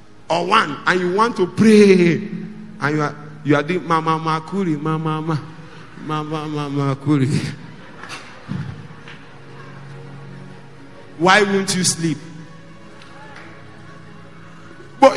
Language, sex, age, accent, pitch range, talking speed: English, male, 50-69, Nigerian, 150-210 Hz, 95 wpm